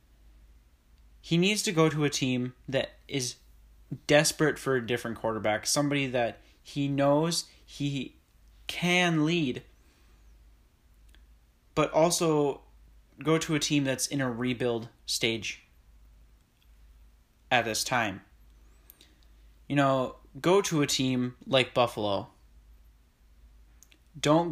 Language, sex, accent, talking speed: English, male, American, 110 wpm